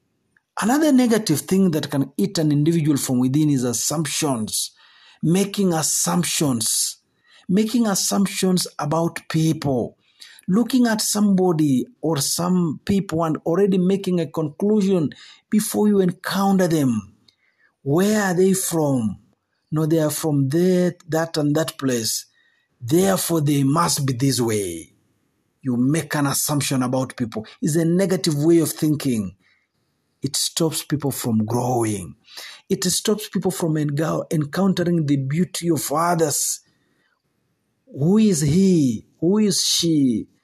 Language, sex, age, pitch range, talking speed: Swahili, male, 50-69, 135-180 Hz, 125 wpm